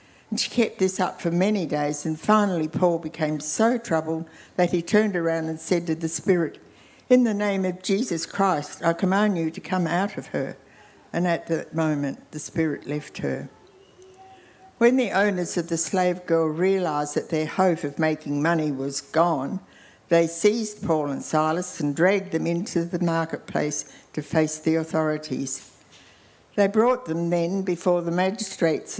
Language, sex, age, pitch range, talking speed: English, female, 60-79, 155-185 Hz, 170 wpm